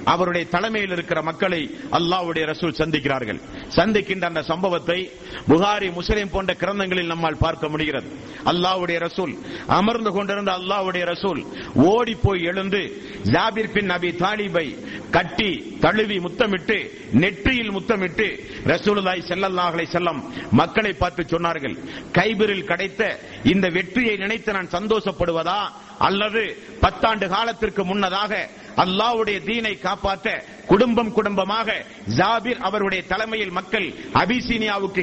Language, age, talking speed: Tamil, 50-69, 105 wpm